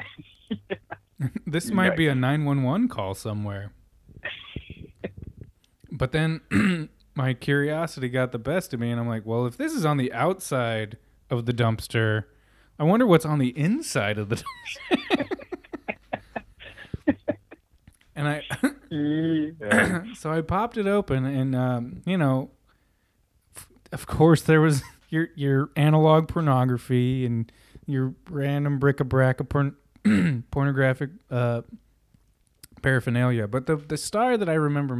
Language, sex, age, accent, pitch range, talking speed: English, male, 20-39, American, 120-155 Hz, 130 wpm